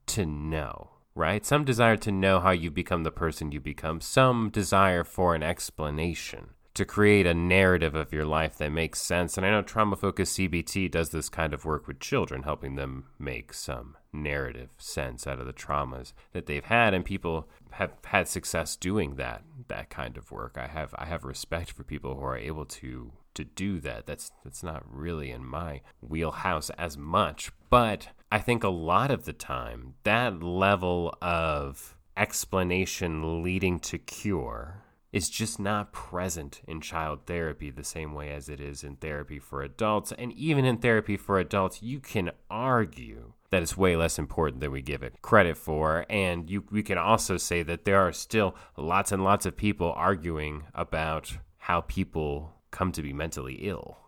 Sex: male